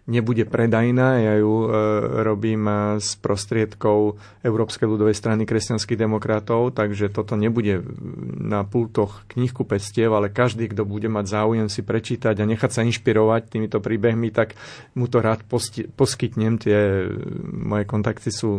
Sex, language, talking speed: male, Slovak, 140 wpm